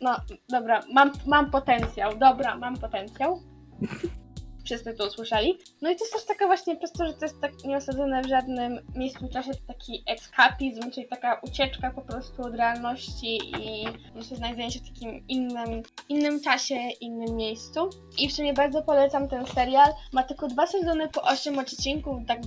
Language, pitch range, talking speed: Polish, 245-290 Hz, 175 wpm